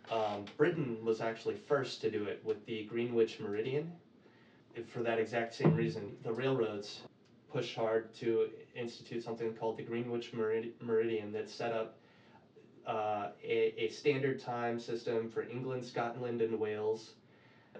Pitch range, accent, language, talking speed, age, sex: 110-125 Hz, American, English, 155 wpm, 20-39, male